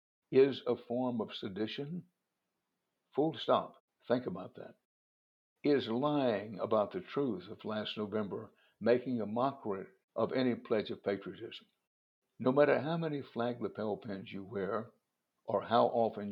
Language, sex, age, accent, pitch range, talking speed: English, male, 60-79, American, 110-135 Hz, 140 wpm